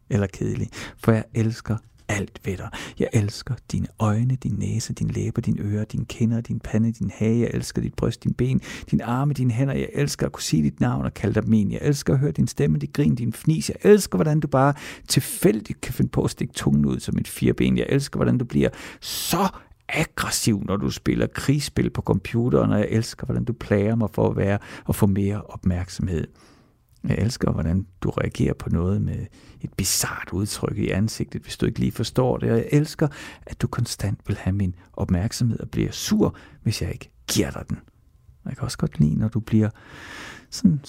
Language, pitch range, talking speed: Danish, 100-130 Hz, 210 wpm